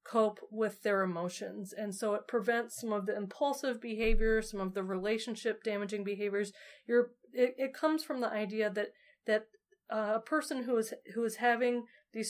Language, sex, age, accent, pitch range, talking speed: English, female, 30-49, American, 205-235 Hz, 180 wpm